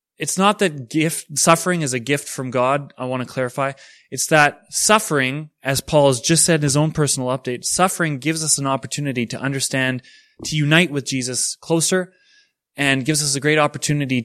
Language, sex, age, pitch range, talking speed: English, male, 20-39, 120-155 Hz, 185 wpm